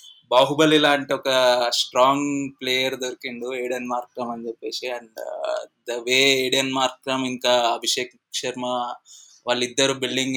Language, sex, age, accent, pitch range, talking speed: Telugu, male, 20-39, native, 125-145 Hz, 115 wpm